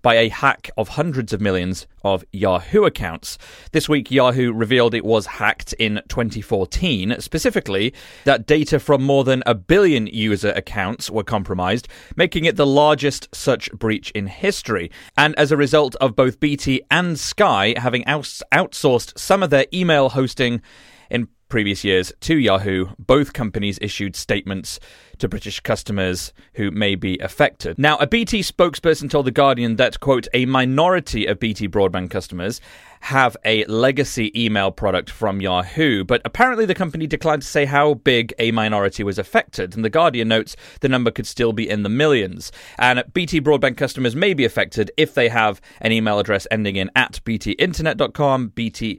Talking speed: 170 wpm